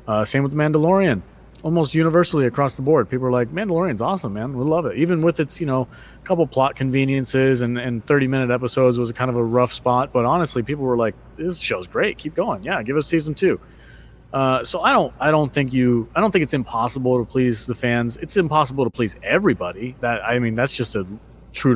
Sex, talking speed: male, 225 wpm